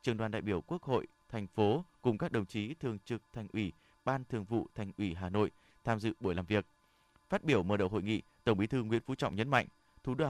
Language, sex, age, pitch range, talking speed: Vietnamese, male, 20-39, 105-145 Hz, 255 wpm